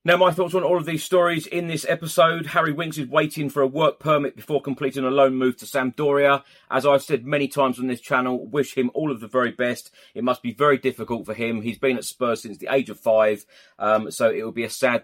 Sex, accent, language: male, British, English